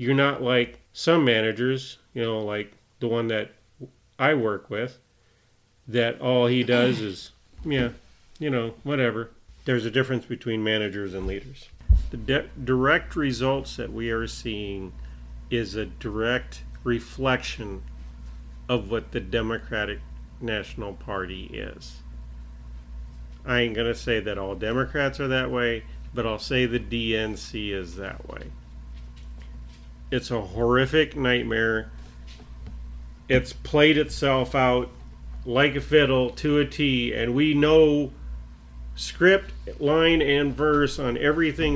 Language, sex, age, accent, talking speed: English, male, 40-59, American, 130 wpm